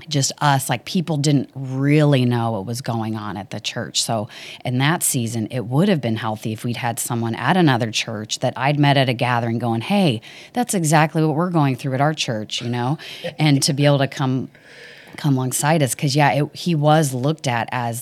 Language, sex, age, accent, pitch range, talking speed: English, female, 30-49, American, 120-150 Hz, 220 wpm